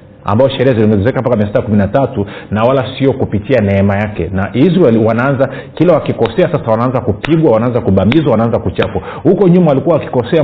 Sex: male